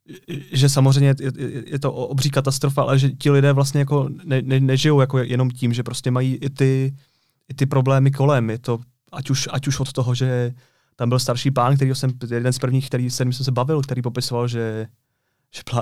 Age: 30-49